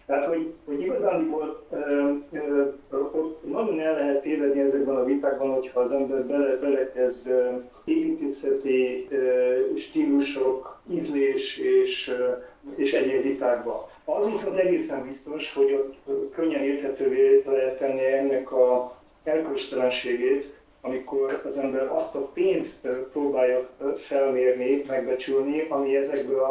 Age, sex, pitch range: 40-59, male, 130-160 Hz